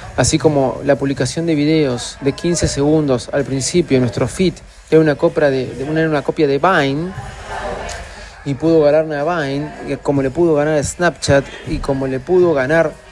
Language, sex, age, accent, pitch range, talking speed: Spanish, male, 30-49, Argentinian, 130-155 Hz, 165 wpm